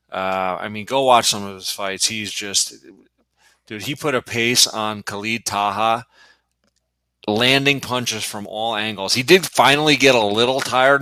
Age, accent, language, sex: 30-49, American, English, male